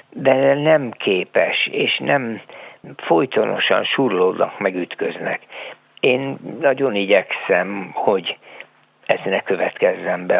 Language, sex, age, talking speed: Hungarian, male, 60-79, 90 wpm